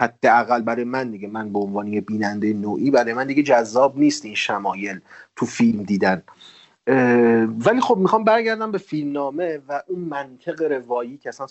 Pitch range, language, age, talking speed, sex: 115-165 Hz, Persian, 30-49, 175 wpm, male